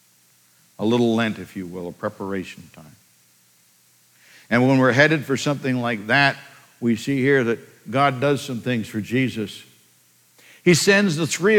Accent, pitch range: American, 110-145 Hz